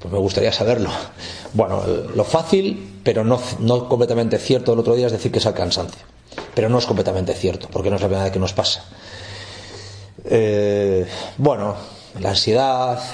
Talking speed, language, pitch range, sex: 175 wpm, Spanish, 100-120 Hz, male